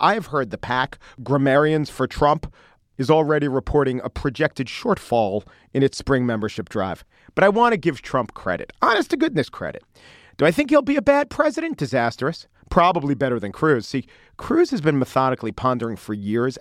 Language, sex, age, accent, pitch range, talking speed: English, male, 40-59, American, 120-160 Hz, 175 wpm